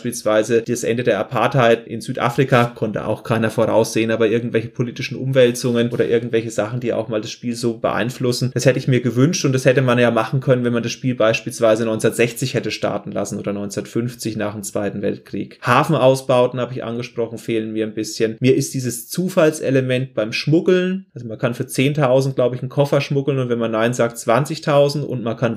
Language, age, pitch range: German, 30-49, 115-135 Hz